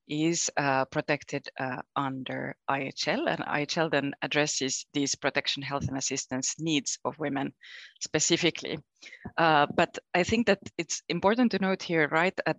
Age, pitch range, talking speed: 20-39, 145-170 Hz, 150 wpm